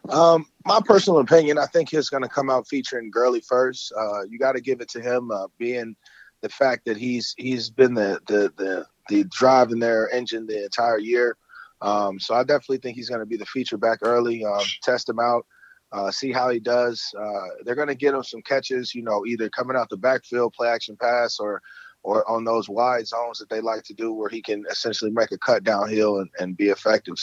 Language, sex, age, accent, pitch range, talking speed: English, male, 30-49, American, 110-130 Hz, 230 wpm